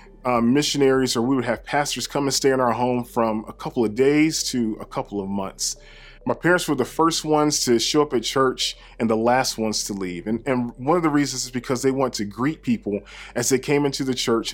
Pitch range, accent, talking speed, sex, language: 115-145 Hz, American, 245 wpm, male, English